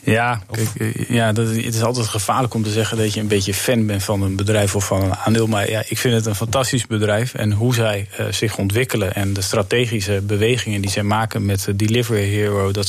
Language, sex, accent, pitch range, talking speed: Dutch, male, Dutch, 105-120 Hz, 220 wpm